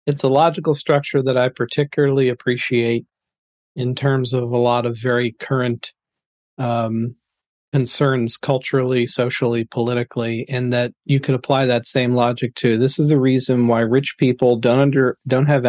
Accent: American